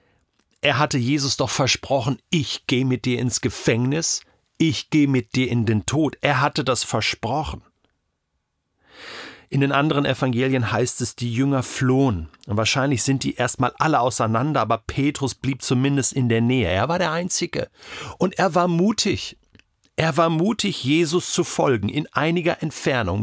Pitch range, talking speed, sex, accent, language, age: 120-160 Hz, 160 wpm, male, German, German, 40-59